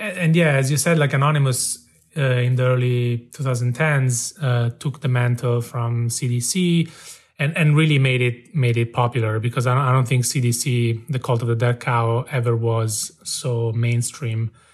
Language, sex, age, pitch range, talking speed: English, male, 30-49, 120-140 Hz, 170 wpm